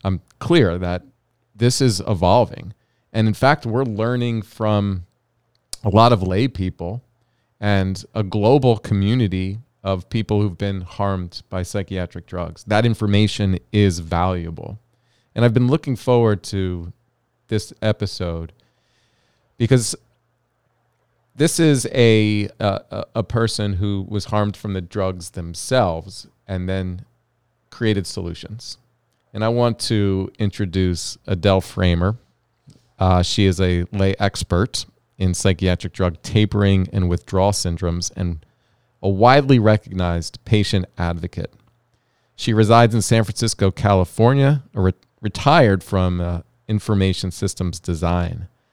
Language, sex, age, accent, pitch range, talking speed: English, male, 40-59, American, 95-115 Hz, 120 wpm